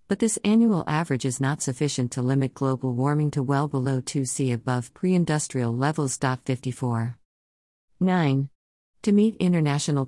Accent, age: American, 50-69